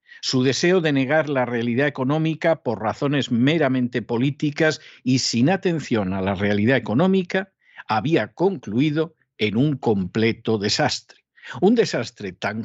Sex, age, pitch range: male, 50-69, 125-180 Hz